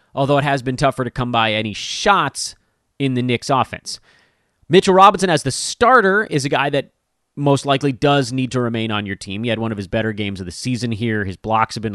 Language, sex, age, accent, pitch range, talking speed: English, male, 30-49, American, 110-165 Hz, 235 wpm